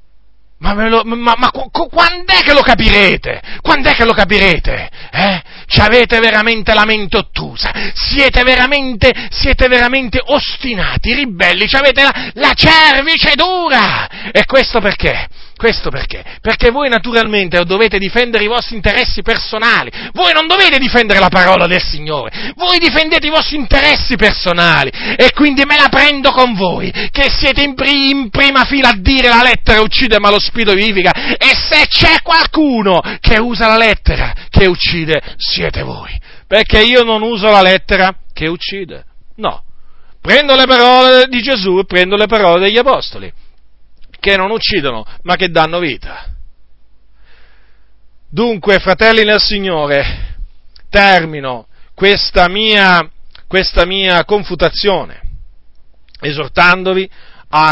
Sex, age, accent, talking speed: male, 40-59, native, 140 wpm